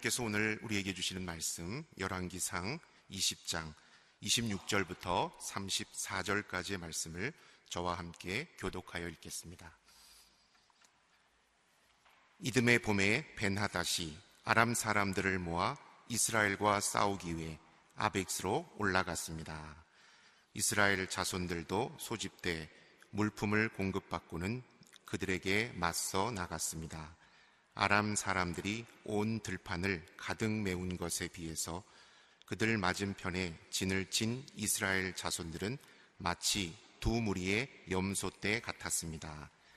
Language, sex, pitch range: Korean, male, 85-105 Hz